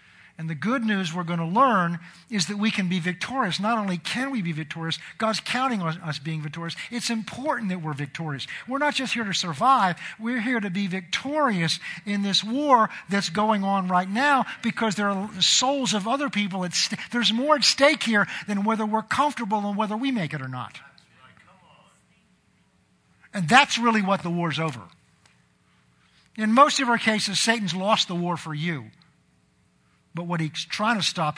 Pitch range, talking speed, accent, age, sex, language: 150-215 Hz, 185 wpm, American, 50-69, male, English